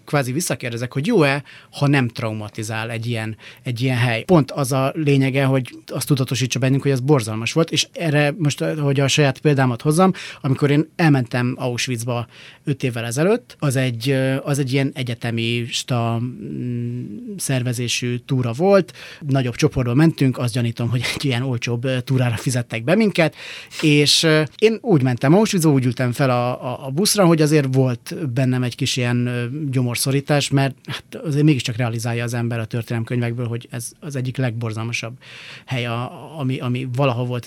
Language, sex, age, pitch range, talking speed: Hungarian, male, 30-49, 125-155 Hz, 165 wpm